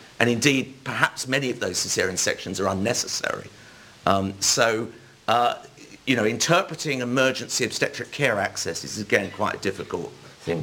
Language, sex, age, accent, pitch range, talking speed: English, male, 50-69, British, 105-140 Hz, 135 wpm